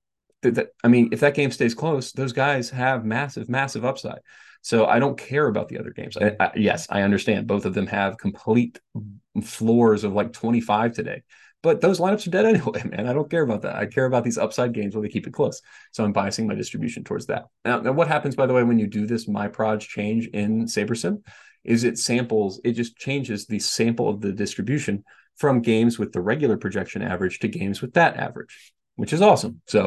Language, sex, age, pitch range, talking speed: English, male, 30-49, 110-135 Hz, 220 wpm